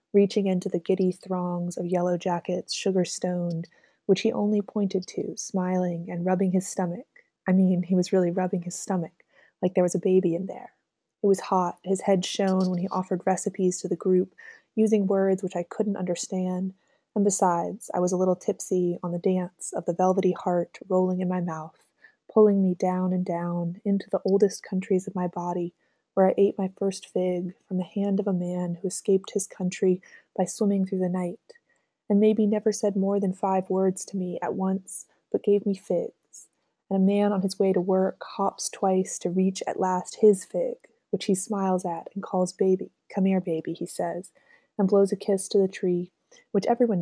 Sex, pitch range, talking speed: female, 180-200 Hz, 200 wpm